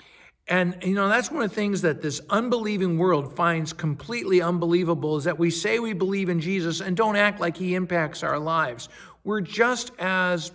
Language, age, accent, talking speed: English, 60-79, American, 195 wpm